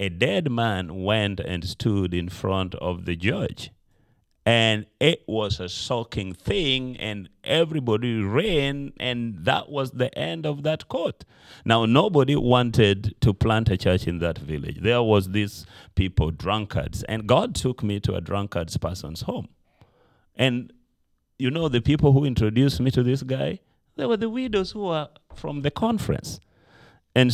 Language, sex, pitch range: English, male, 90-125 Hz